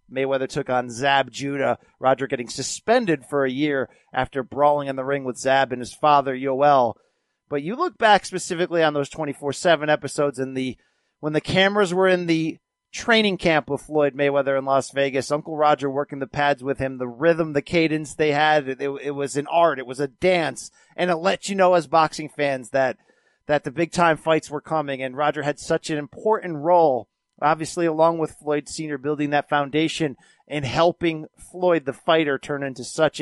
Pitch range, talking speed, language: 135-165 Hz, 195 wpm, English